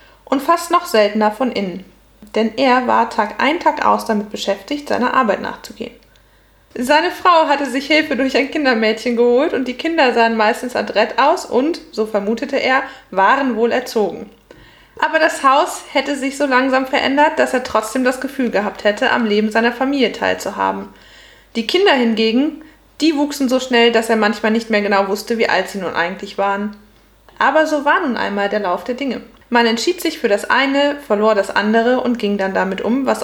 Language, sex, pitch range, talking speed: German, female, 210-265 Hz, 190 wpm